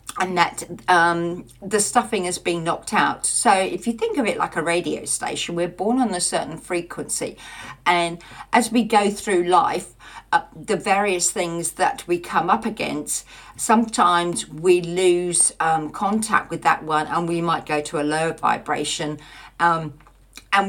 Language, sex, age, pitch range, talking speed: English, female, 50-69, 165-205 Hz, 170 wpm